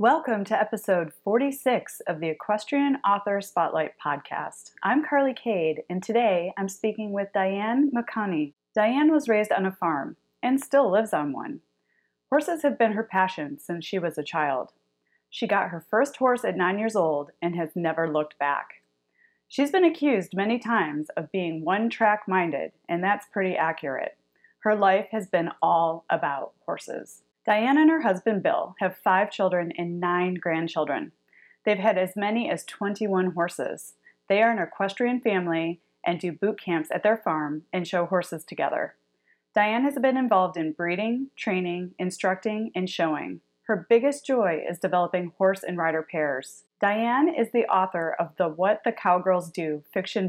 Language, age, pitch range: English, 30-49, 170-225 Hz